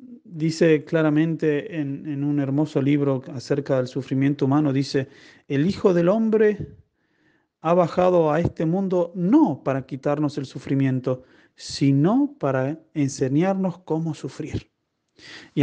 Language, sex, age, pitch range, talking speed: Spanish, male, 40-59, 150-210 Hz, 125 wpm